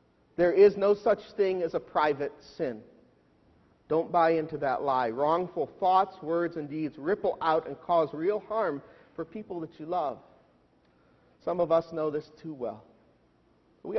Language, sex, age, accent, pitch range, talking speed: English, male, 50-69, American, 140-190 Hz, 165 wpm